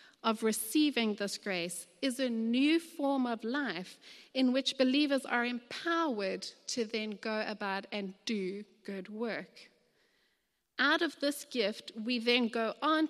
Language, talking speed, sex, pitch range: English, 140 wpm, female, 200-275 Hz